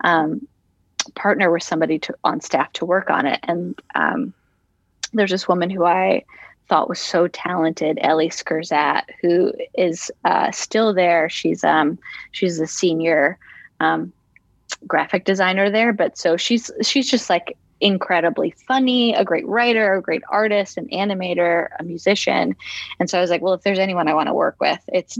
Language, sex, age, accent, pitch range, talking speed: English, female, 20-39, American, 165-200 Hz, 170 wpm